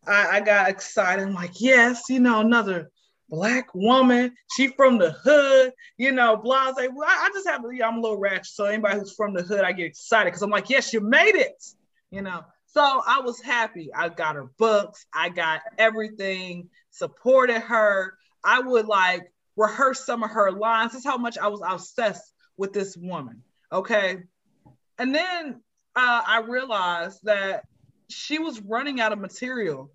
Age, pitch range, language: 20-39, 195-290 Hz, English